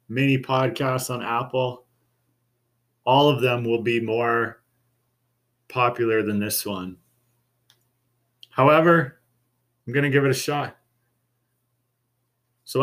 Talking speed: 110 wpm